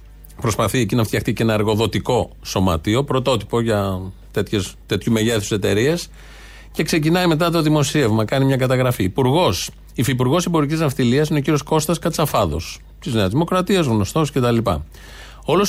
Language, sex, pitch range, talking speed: Greek, male, 110-160 Hz, 140 wpm